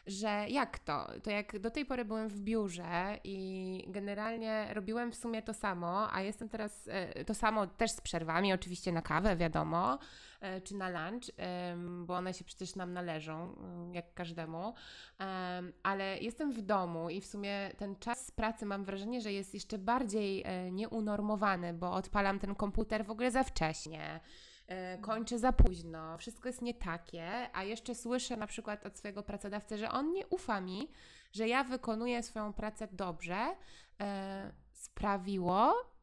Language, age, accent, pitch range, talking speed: Polish, 20-39, native, 180-220 Hz, 155 wpm